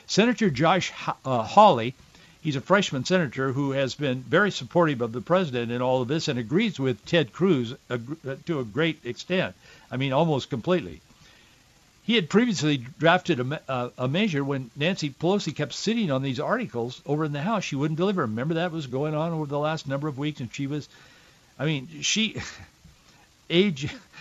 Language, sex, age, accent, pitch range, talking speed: English, male, 60-79, American, 125-170 Hz, 180 wpm